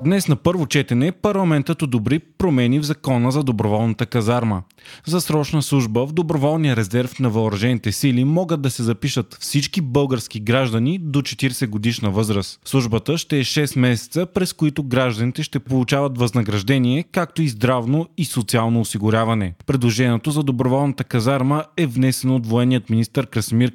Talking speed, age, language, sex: 145 wpm, 20-39, Bulgarian, male